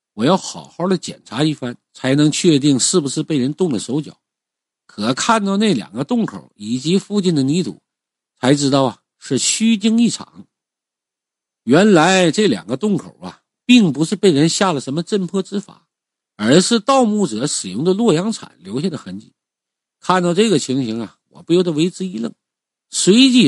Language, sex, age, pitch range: Chinese, male, 50-69, 150-205 Hz